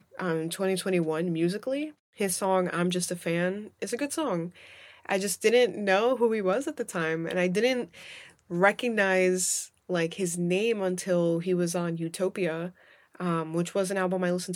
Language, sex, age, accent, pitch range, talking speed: English, female, 20-39, American, 170-205 Hz, 175 wpm